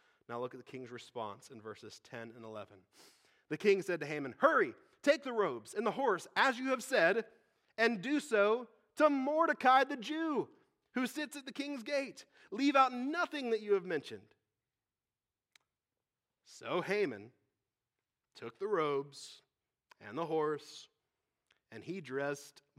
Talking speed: 155 wpm